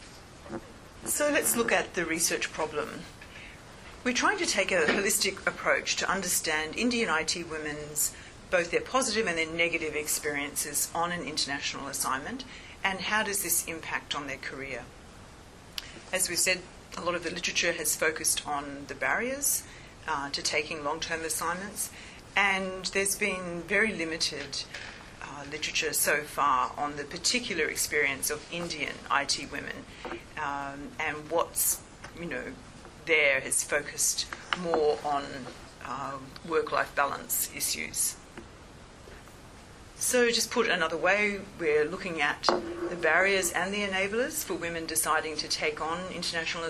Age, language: 40-59, English